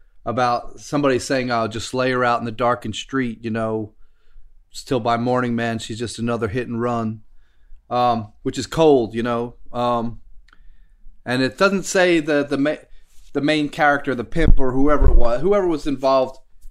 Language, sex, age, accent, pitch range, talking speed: English, male, 30-49, American, 110-140 Hz, 180 wpm